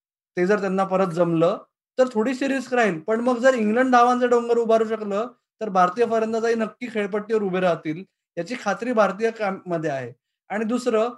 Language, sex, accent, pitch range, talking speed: Marathi, male, native, 170-225 Hz, 70 wpm